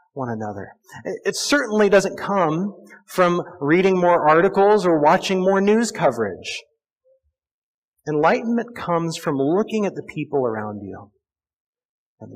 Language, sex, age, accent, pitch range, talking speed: English, male, 40-59, American, 145-220 Hz, 120 wpm